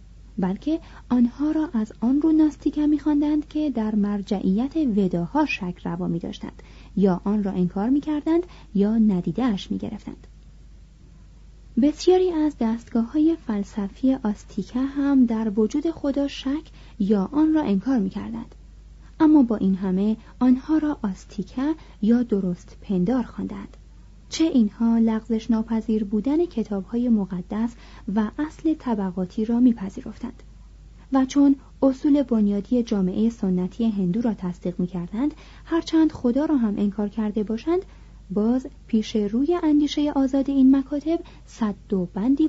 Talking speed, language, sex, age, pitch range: 130 wpm, Persian, female, 30-49, 205-290 Hz